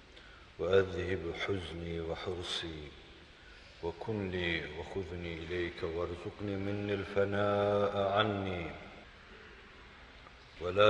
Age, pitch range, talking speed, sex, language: 50-69, 80-100 Hz, 65 wpm, male, Turkish